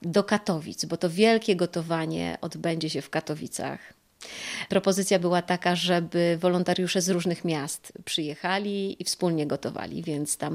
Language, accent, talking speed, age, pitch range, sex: Polish, native, 135 wpm, 30-49, 165-200 Hz, female